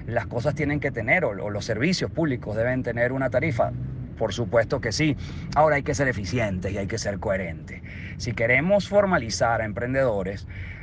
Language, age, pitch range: Spanish, 30-49, 105-140 Hz